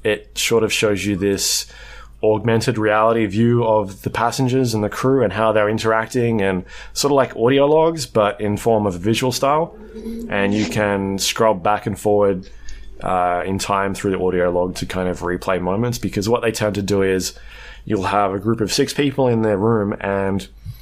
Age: 20-39